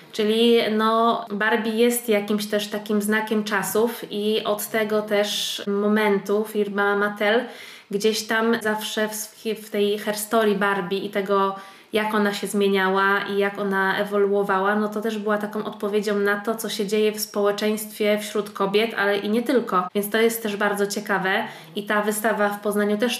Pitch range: 205-220 Hz